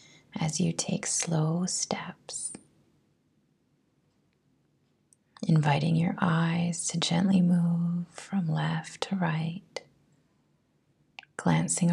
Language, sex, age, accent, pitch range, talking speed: English, female, 30-49, American, 155-170 Hz, 80 wpm